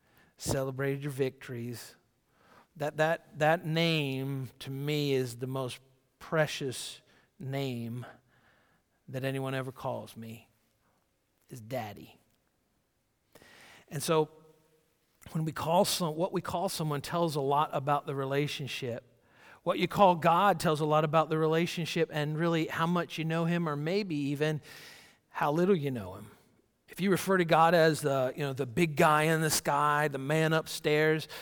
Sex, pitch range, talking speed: male, 135-165 Hz, 155 wpm